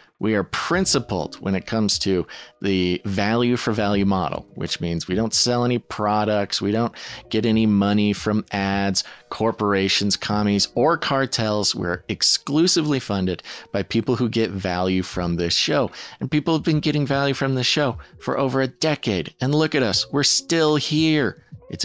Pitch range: 100-135 Hz